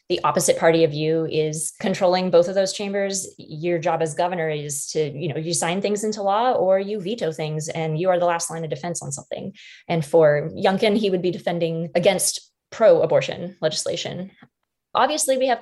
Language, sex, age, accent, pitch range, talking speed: English, female, 20-39, American, 160-195 Hz, 195 wpm